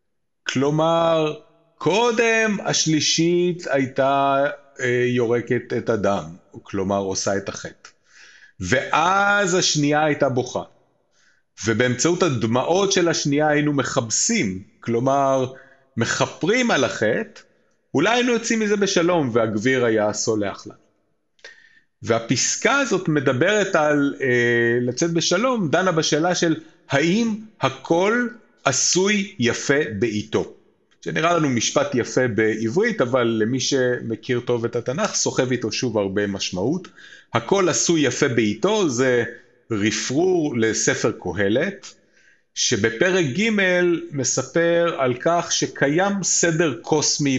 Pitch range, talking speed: 115-170 Hz, 105 wpm